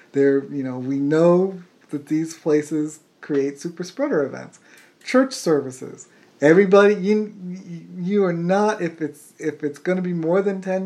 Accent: American